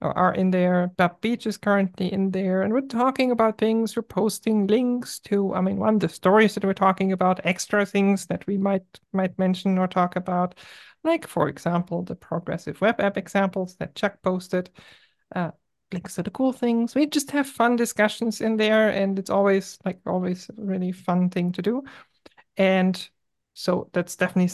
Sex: male